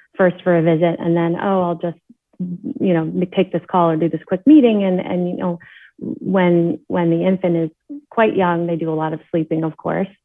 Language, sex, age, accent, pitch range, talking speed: English, female, 30-49, American, 175-210 Hz, 225 wpm